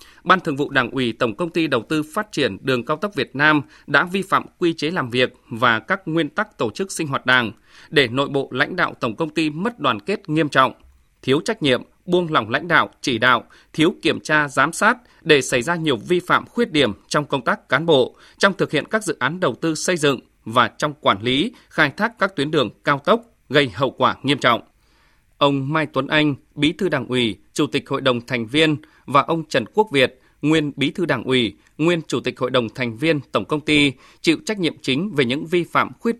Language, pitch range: Vietnamese, 130-165 Hz